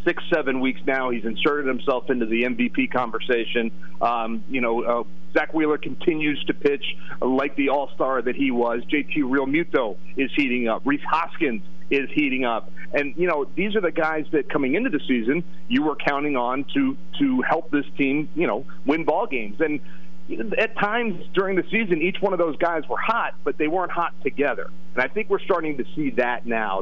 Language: English